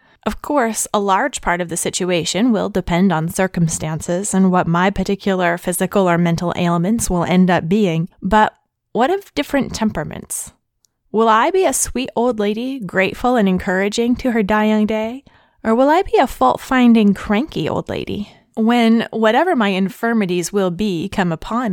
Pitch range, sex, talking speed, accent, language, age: 185-240 Hz, female, 165 wpm, American, English, 20-39